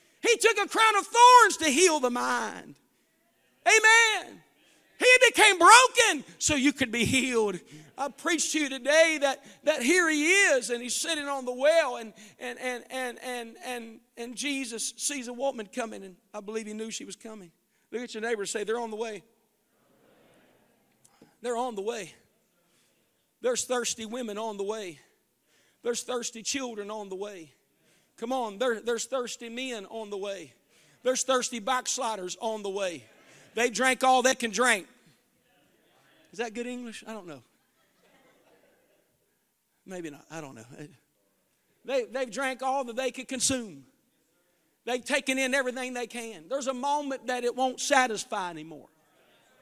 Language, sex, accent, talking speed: English, male, American, 165 wpm